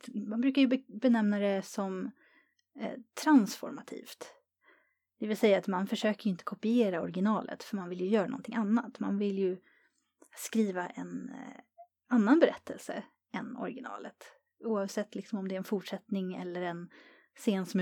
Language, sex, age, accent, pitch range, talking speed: Swedish, female, 30-49, native, 185-235 Hz, 155 wpm